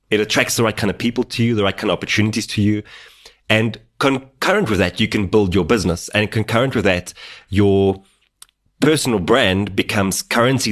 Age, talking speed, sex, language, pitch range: 30-49, 190 wpm, male, English, 95-115 Hz